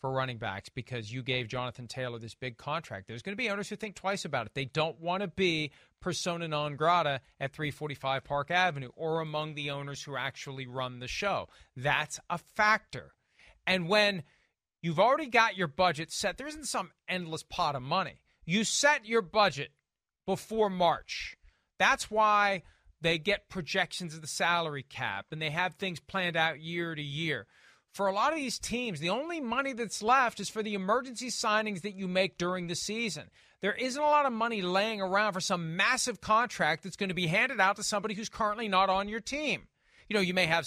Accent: American